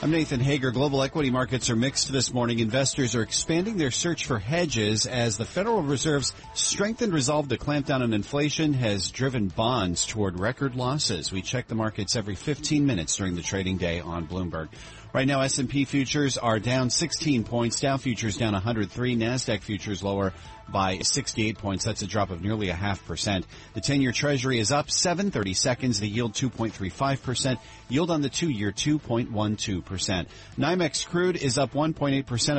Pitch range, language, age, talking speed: 105-140 Hz, English, 40-59, 175 wpm